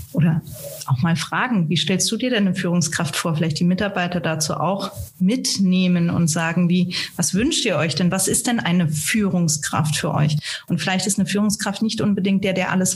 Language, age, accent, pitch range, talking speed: German, 30-49, German, 165-205 Hz, 200 wpm